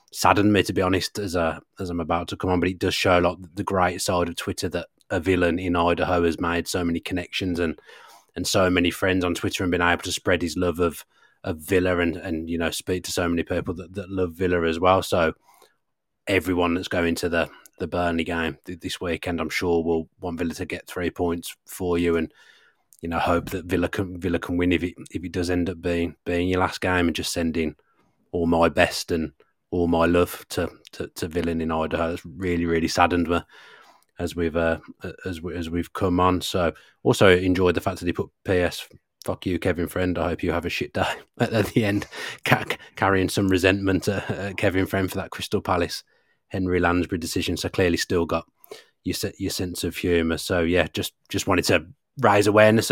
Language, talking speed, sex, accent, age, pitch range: English, 225 wpm, male, British, 30-49, 85-95 Hz